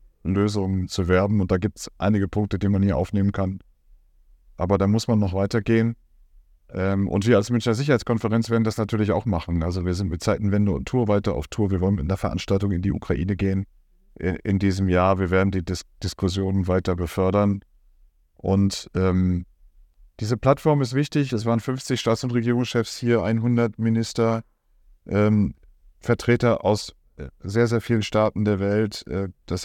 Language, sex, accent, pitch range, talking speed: German, male, German, 95-115 Hz, 170 wpm